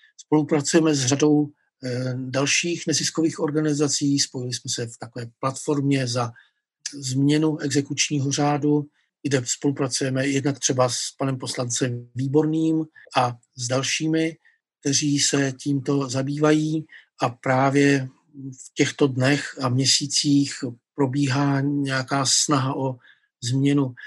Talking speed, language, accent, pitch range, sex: 105 wpm, Czech, native, 130-150 Hz, male